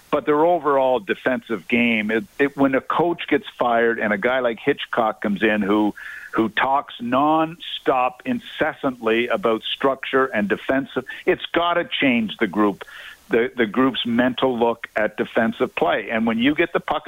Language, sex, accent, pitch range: English, male, American, 115-145 Hz